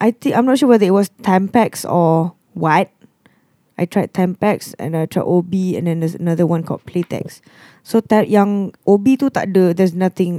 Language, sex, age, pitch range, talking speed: English, female, 20-39, 170-210 Hz, 200 wpm